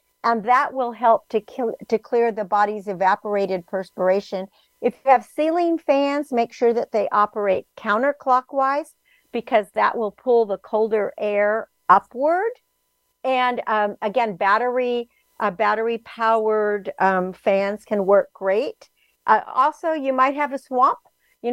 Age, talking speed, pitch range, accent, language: 50-69, 140 wpm, 210-255 Hz, American, English